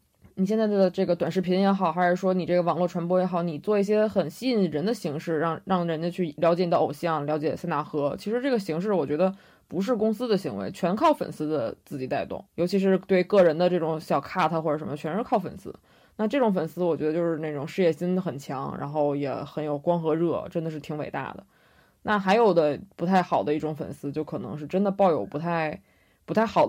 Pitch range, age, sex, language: 160-200 Hz, 20-39, female, Chinese